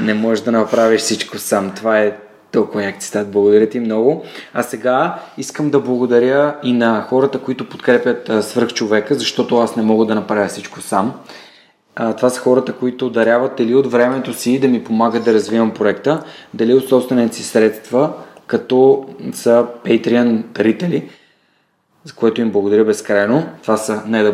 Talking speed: 165 wpm